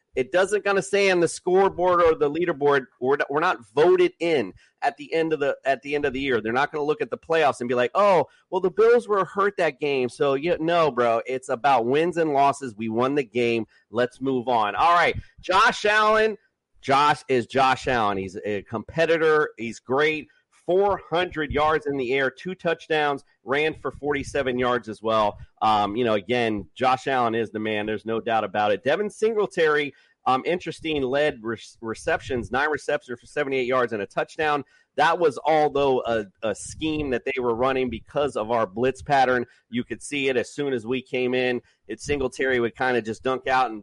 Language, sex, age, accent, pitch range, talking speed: English, male, 40-59, American, 120-160 Hz, 205 wpm